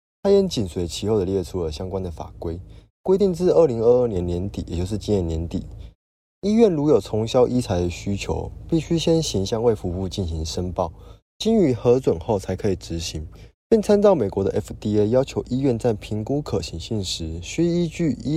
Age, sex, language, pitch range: 20-39, male, Chinese, 95-125 Hz